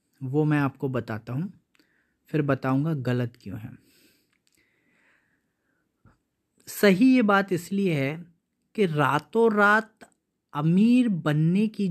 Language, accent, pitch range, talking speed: Hindi, native, 130-175 Hz, 105 wpm